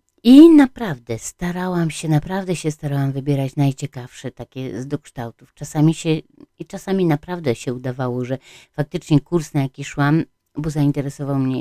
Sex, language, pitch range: female, Polish, 130-160 Hz